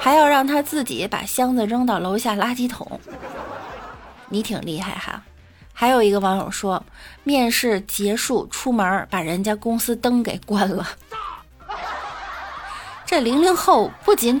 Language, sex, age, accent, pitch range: Chinese, female, 30-49, native, 215-330 Hz